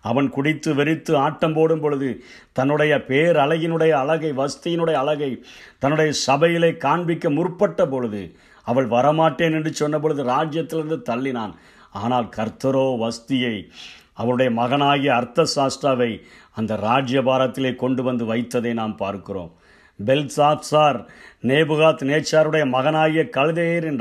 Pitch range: 125-160 Hz